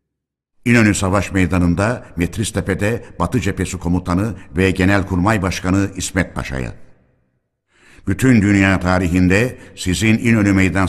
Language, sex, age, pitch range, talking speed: Turkish, male, 60-79, 90-100 Hz, 105 wpm